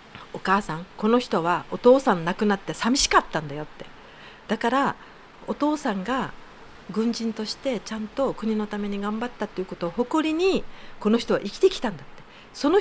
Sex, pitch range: female, 180-265 Hz